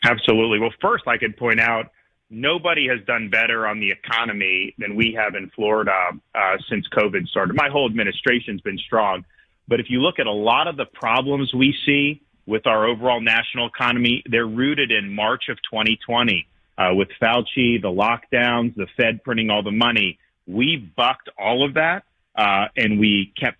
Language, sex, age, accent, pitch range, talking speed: English, male, 40-59, American, 110-125 Hz, 180 wpm